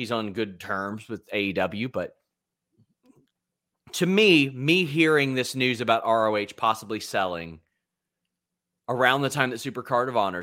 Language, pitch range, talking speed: English, 105-130 Hz, 140 wpm